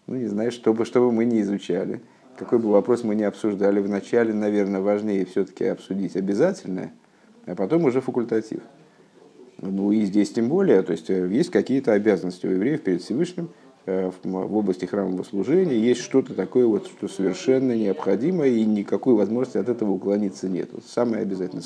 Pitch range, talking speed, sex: 105-145 Hz, 165 wpm, male